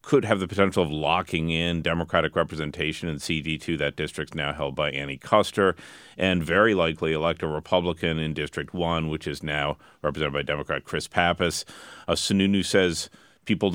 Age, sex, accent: 40-59, male, American